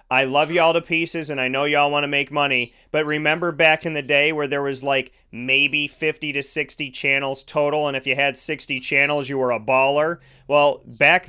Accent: American